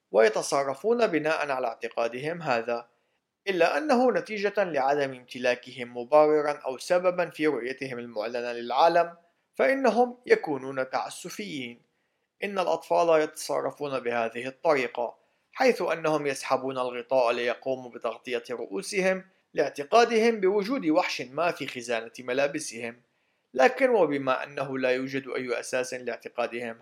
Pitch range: 125-170 Hz